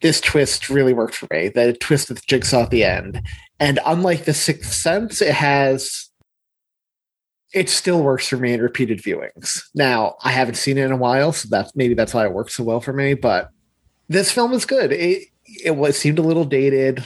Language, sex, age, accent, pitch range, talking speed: English, male, 30-49, American, 115-140 Hz, 210 wpm